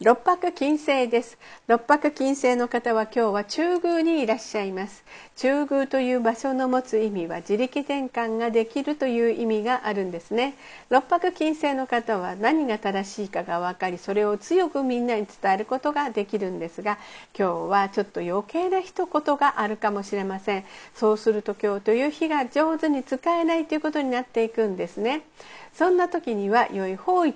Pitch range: 210-295 Hz